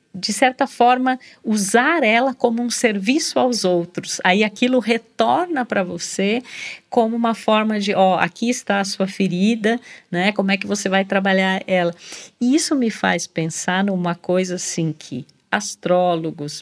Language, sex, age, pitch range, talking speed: Portuguese, female, 50-69, 175-225 Hz, 155 wpm